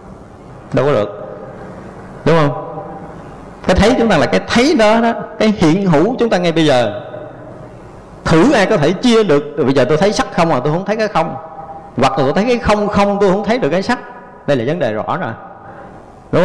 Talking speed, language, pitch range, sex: 220 wpm, Vietnamese, 150-220 Hz, male